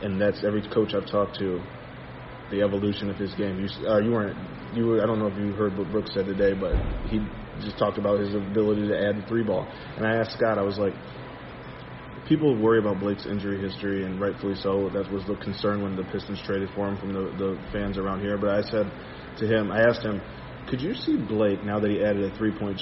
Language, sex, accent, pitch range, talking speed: English, male, American, 100-120 Hz, 235 wpm